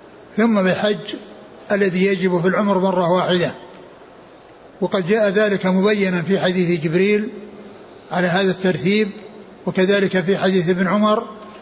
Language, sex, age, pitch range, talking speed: Arabic, male, 60-79, 185-205 Hz, 120 wpm